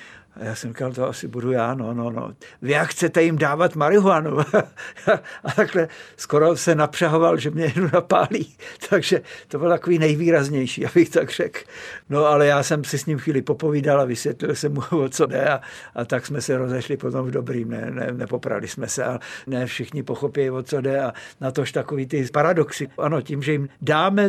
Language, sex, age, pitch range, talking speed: Czech, male, 60-79, 130-160 Hz, 205 wpm